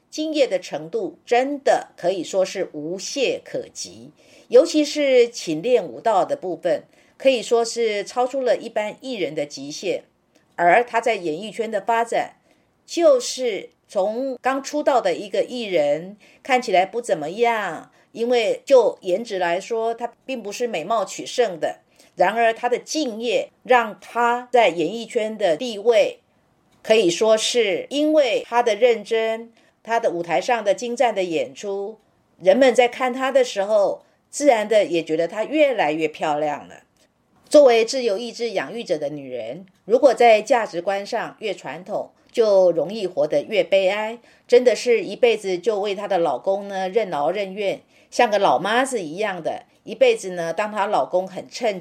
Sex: female